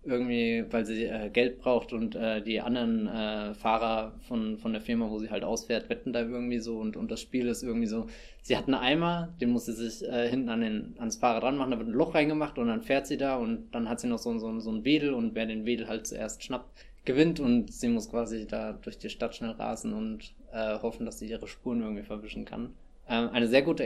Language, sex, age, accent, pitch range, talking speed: German, male, 20-39, German, 115-150 Hz, 250 wpm